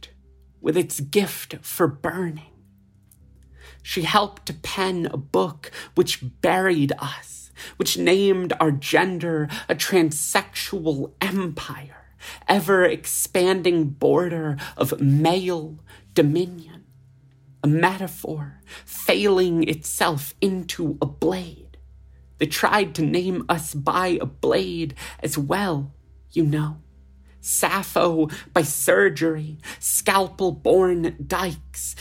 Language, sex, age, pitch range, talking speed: English, male, 30-49, 135-185 Hz, 95 wpm